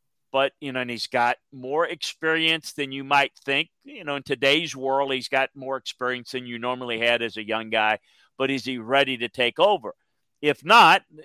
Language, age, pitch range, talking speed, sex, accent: English, 50-69, 120-145 Hz, 205 wpm, male, American